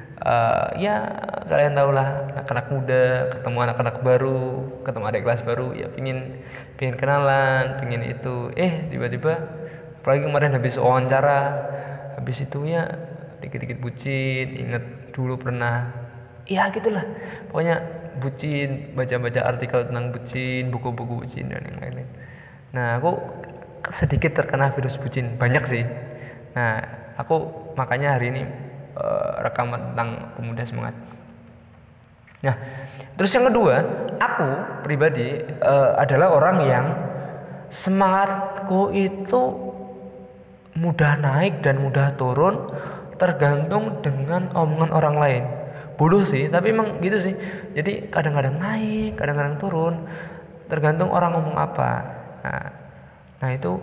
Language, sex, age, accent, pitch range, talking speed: Indonesian, male, 20-39, native, 125-165 Hz, 115 wpm